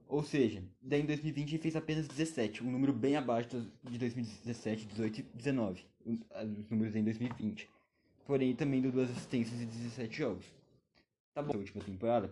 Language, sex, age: Portuguese, male, 20-39